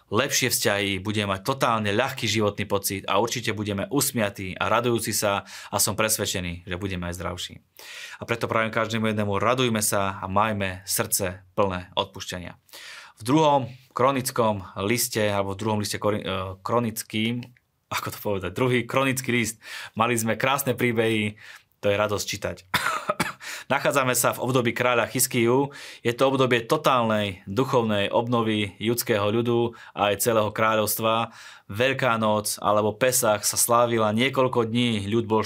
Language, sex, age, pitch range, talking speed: Slovak, male, 20-39, 100-120 Hz, 145 wpm